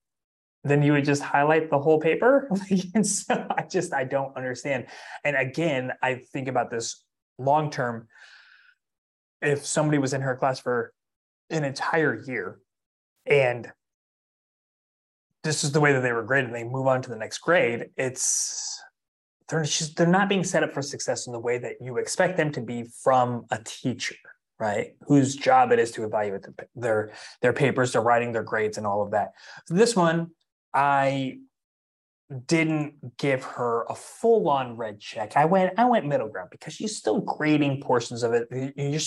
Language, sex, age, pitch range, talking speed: English, male, 20-39, 120-170 Hz, 175 wpm